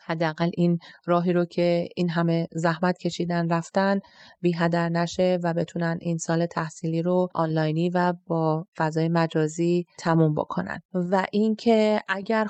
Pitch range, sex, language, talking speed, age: 165-185 Hz, female, Persian, 140 wpm, 30-49